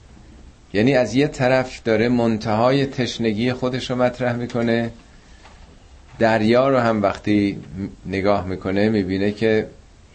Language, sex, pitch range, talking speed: Persian, male, 90-120 Hz, 110 wpm